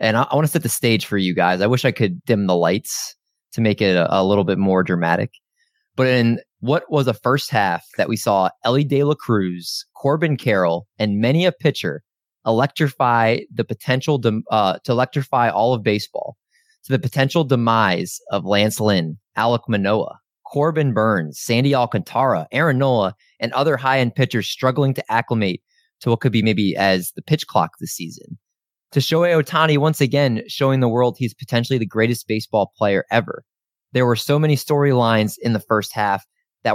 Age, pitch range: 20-39, 105-135 Hz